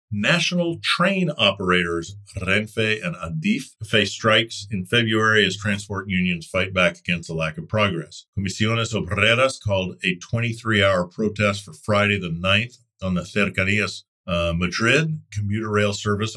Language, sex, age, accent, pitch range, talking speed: English, male, 50-69, American, 90-115 Hz, 135 wpm